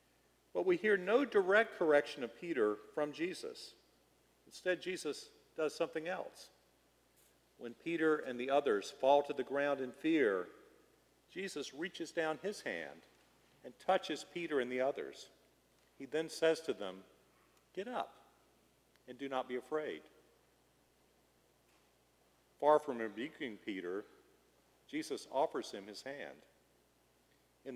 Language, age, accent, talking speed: English, 50-69, American, 130 wpm